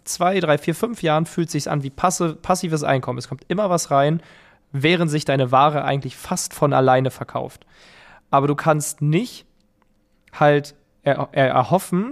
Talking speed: 160 wpm